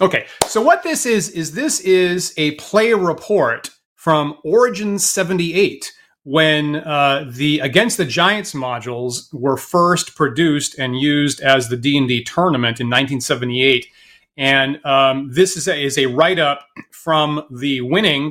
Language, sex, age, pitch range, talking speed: English, male, 30-49, 135-180 Hz, 145 wpm